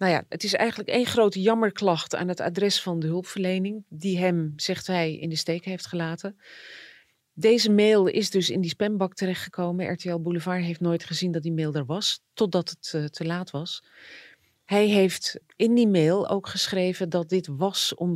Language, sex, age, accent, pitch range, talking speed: Dutch, female, 40-59, Dutch, 160-195 Hz, 190 wpm